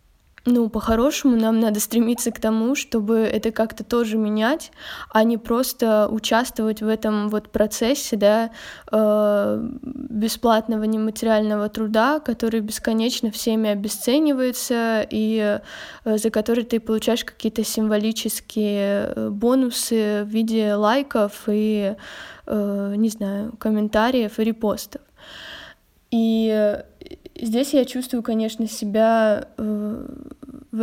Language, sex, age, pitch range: Russian, female, 20-39, 215-235 Hz